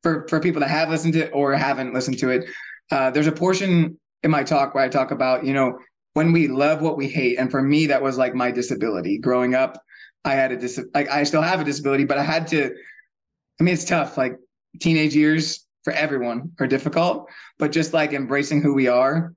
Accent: American